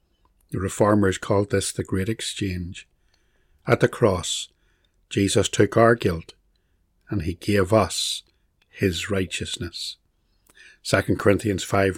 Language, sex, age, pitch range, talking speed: English, male, 60-79, 90-110 Hz, 115 wpm